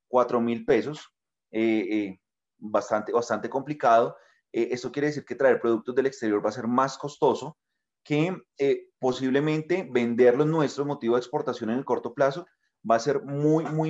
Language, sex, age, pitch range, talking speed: Spanish, male, 30-49, 110-145 Hz, 170 wpm